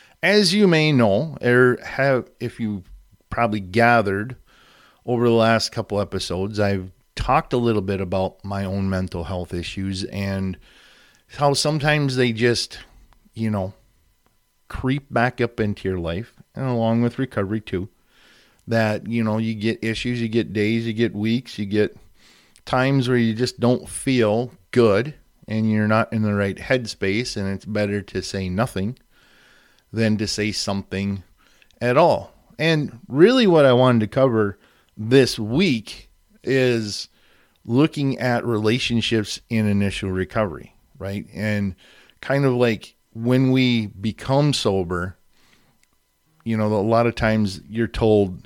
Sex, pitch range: male, 100-120 Hz